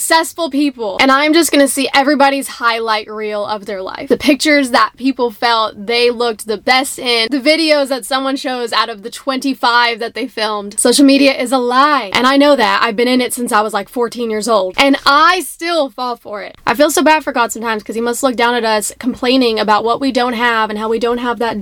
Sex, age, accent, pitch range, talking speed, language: female, 10-29, American, 220-275 Hz, 240 wpm, English